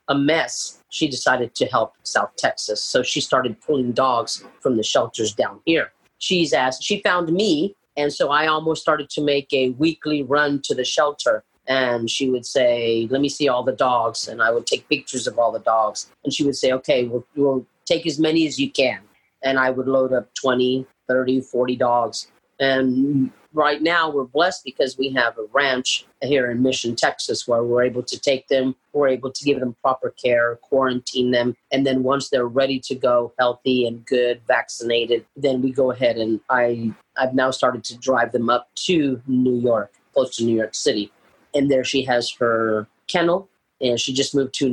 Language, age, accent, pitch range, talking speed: English, 40-59, American, 125-145 Hz, 200 wpm